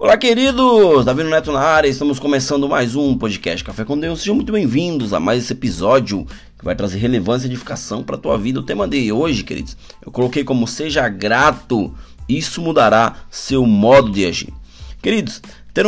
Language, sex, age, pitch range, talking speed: Portuguese, male, 20-39, 110-140 Hz, 185 wpm